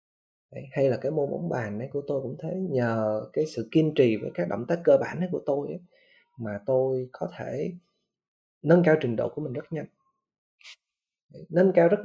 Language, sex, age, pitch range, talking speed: Vietnamese, male, 20-39, 125-180 Hz, 200 wpm